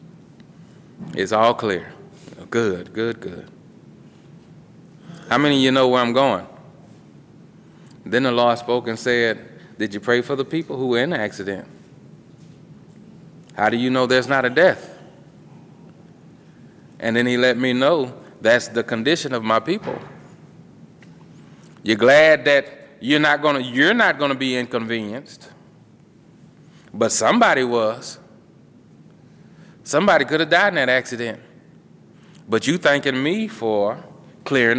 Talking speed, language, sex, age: 130 wpm, English, male, 30-49